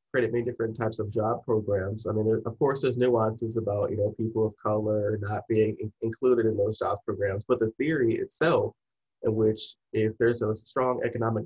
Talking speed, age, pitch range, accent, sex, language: 190 wpm, 30-49, 110-125 Hz, American, male, English